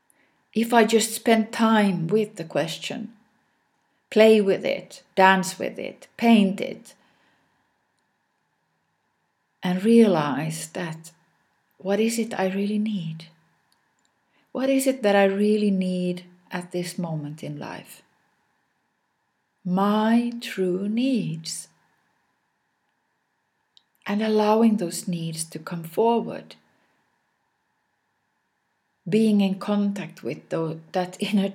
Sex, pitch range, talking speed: female, 175-230 Hz, 105 wpm